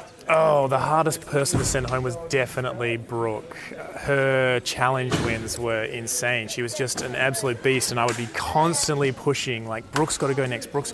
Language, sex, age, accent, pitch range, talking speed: English, male, 20-39, Australian, 125-150 Hz, 185 wpm